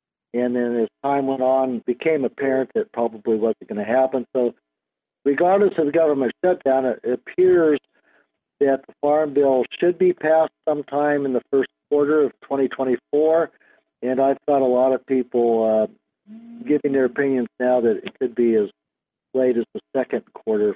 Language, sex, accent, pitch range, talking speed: English, male, American, 120-145 Hz, 175 wpm